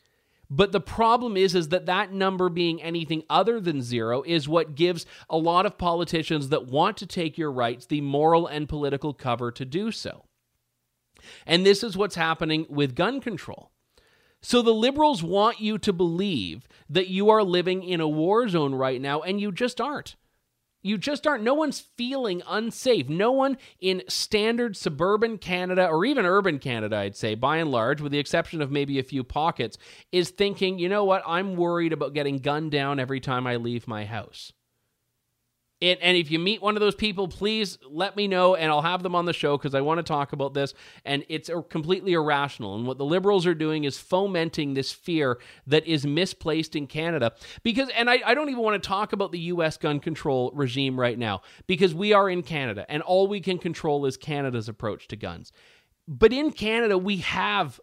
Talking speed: 200 wpm